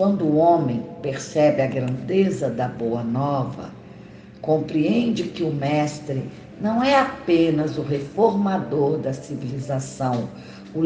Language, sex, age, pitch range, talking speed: Portuguese, female, 60-79, 140-185 Hz, 115 wpm